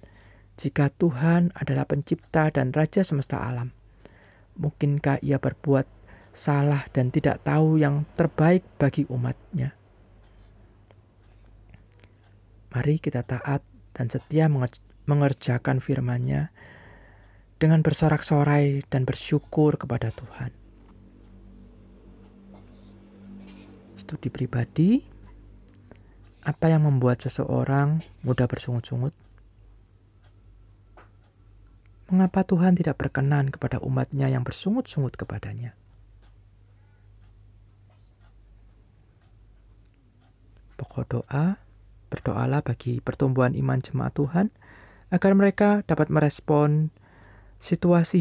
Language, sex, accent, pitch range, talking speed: Indonesian, male, native, 100-145 Hz, 75 wpm